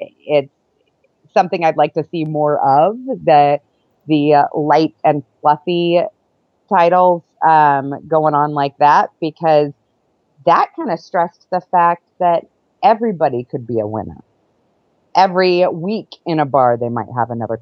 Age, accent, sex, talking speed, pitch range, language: 30-49, American, female, 145 wpm, 135-170 Hz, English